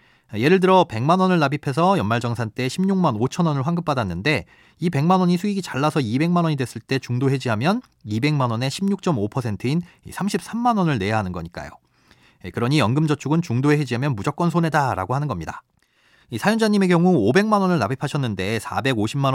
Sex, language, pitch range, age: male, Korean, 115-170 Hz, 30-49